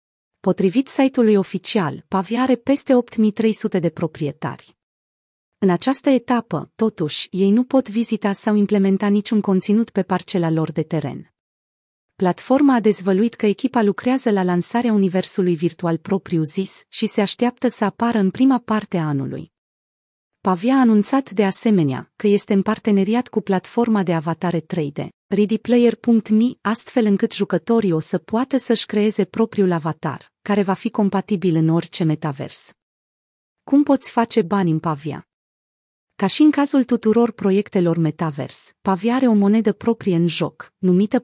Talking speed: 145 wpm